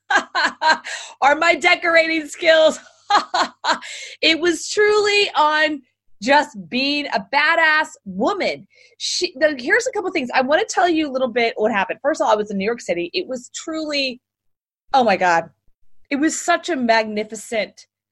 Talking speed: 165 wpm